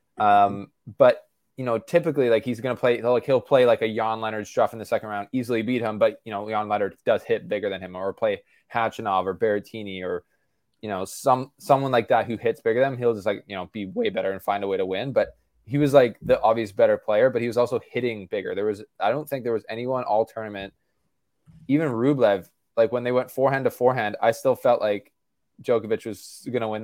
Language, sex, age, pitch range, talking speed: English, male, 20-39, 105-135 Hz, 240 wpm